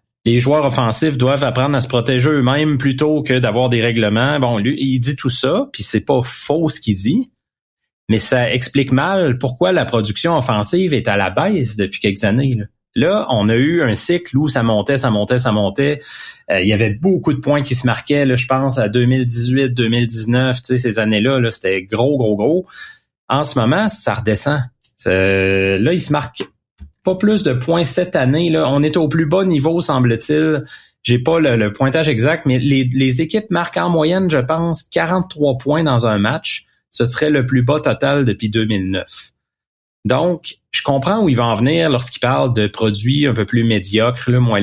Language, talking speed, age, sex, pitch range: French, 200 wpm, 30-49, male, 115-150 Hz